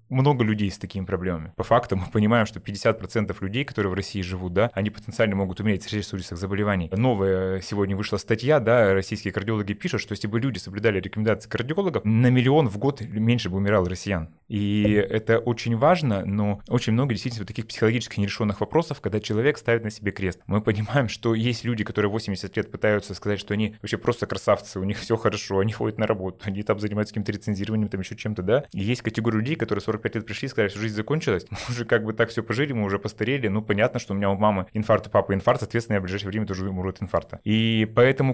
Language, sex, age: Russian, male, 20-39